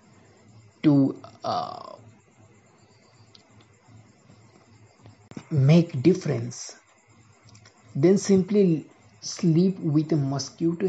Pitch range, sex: 135-190 Hz, male